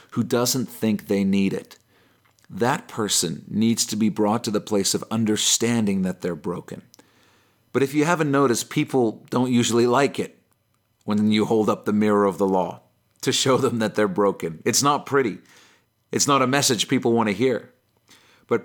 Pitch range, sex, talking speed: 105-130 Hz, male, 185 wpm